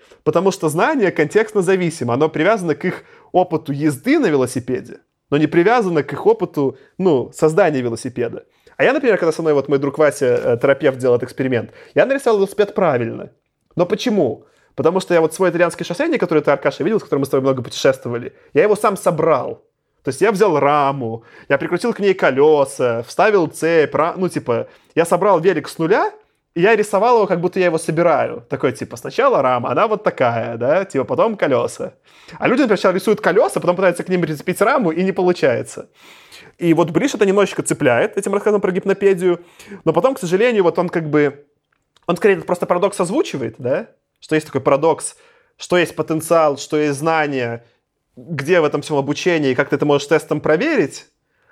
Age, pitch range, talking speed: 20-39, 150-200 Hz, 190 wpm